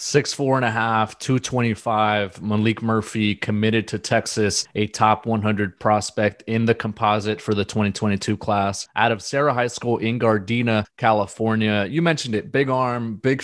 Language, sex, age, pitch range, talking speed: English, male, 20-39, 105-125 Hz, 160 wpm